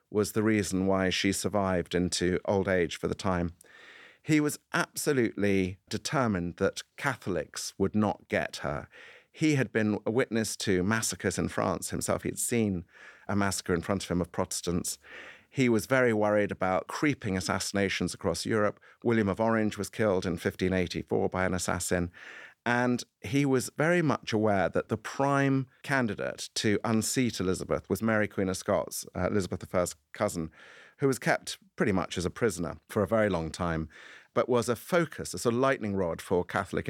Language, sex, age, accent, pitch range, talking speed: English, male, 50-69, British, 95-115 Hz, 175 wpm